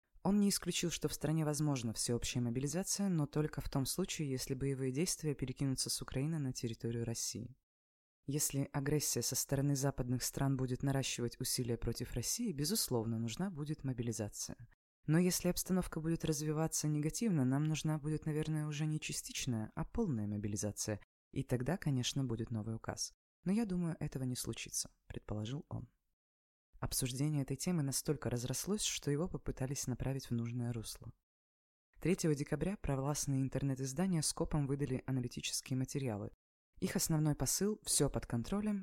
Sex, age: female, 20-39